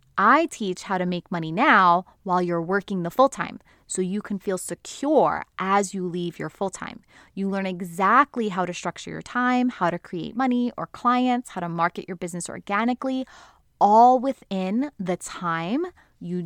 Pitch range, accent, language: 180-250 Hz, American, English